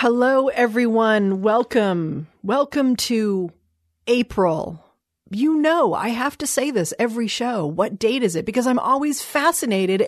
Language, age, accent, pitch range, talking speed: English, 40-59, American, 170-240 Hz, 135 wpm